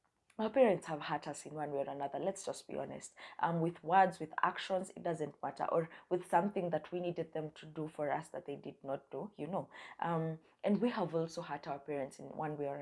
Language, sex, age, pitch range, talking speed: English, female, 20-39, 150-180 Hz, 240 wpm